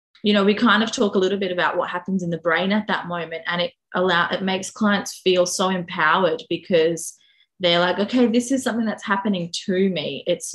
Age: 20-39